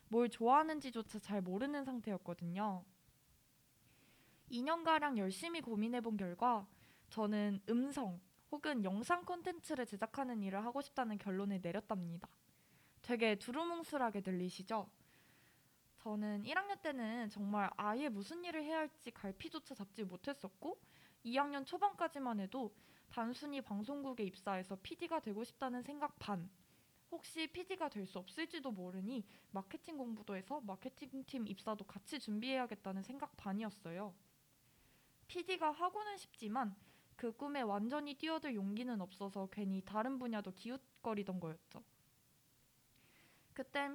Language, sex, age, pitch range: Korean, female, 20-39, 205-290 Hz